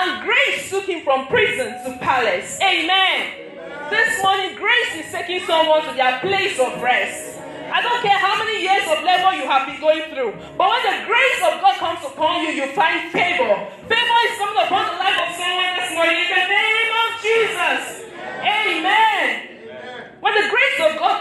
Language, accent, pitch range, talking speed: English, Nigerian, 305-415 Hz, 185 wpm